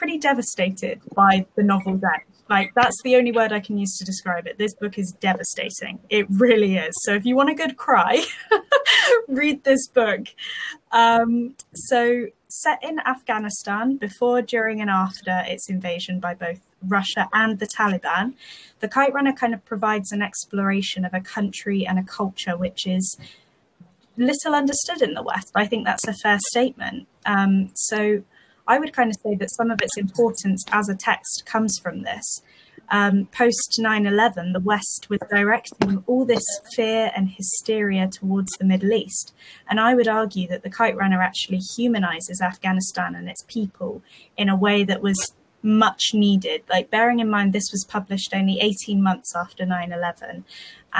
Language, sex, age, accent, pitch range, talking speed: English, female, 20-39, British, 190-230 Hz, 170 wpm